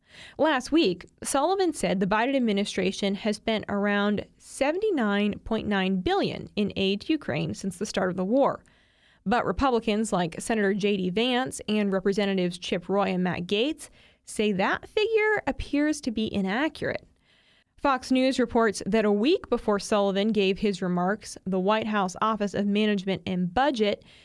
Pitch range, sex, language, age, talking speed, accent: 200-265 Hz, female, English, 20-39, 150 wpm, American